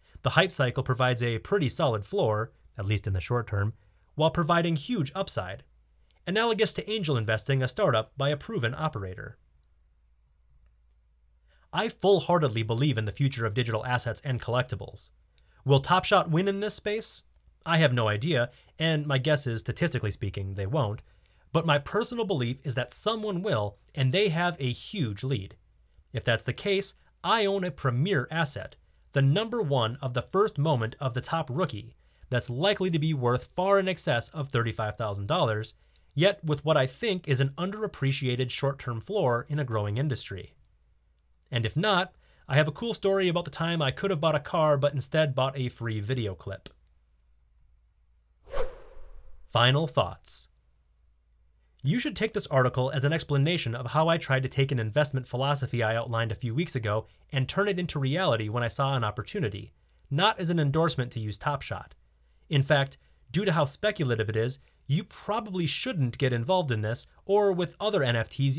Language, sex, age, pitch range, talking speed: English, male, 30-49, 110-160 Hz, 175 wpm